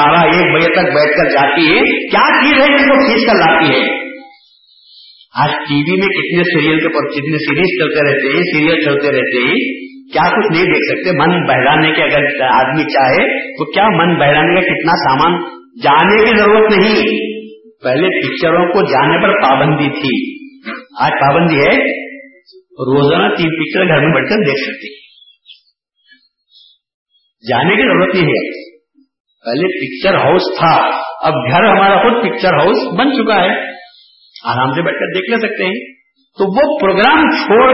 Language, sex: Urdu, male